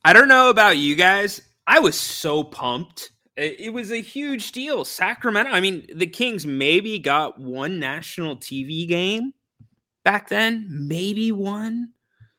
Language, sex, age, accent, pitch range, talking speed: English, male, 20-39, American, 130-225 Hz, 145 wpm